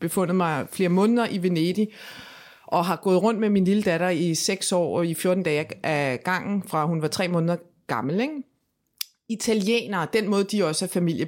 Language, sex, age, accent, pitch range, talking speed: Danish, female, 30-49, native, 175-235 Hz, 195 wpm